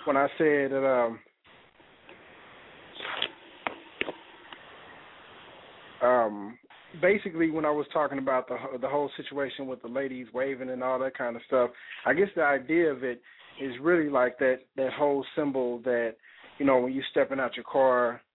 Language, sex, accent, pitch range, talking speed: English, male, American, 125-155 Hz, 155 wpm